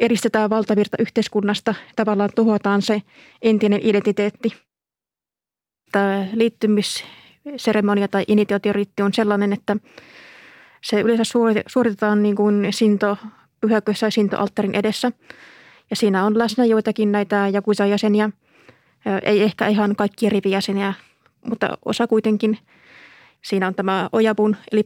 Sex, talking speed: female, 105 wpm